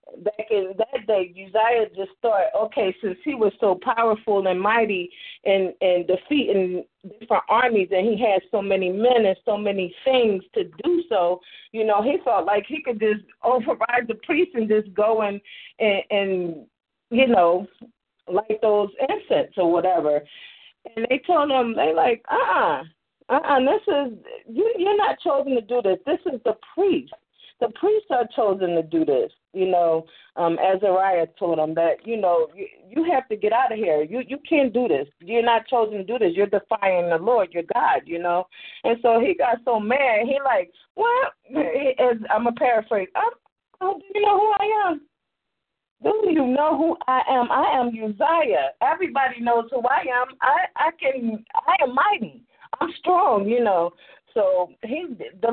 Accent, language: American, English